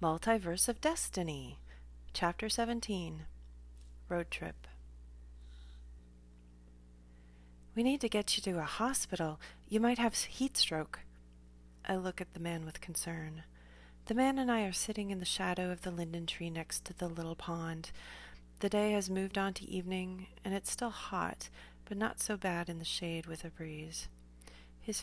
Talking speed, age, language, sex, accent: 160 wpm, 30-49, English, female, American